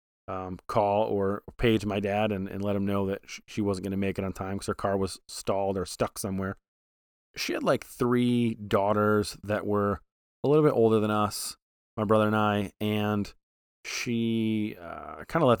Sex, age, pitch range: male, 30-49, 95-115 Hz